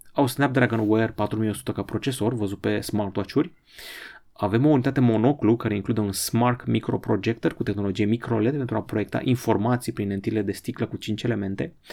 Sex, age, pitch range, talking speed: male, 30-49, 105-125 Hz, 160 wpm